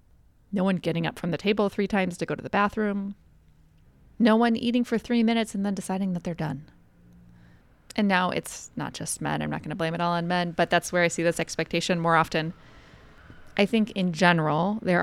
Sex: female